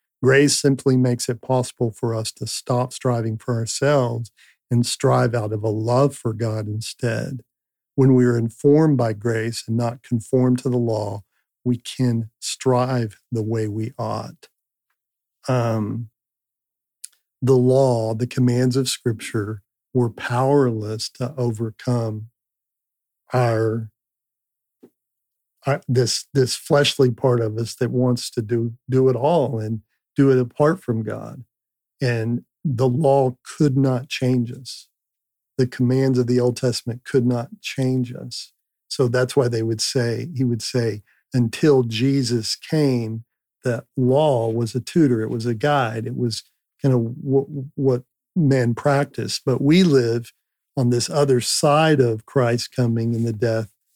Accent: American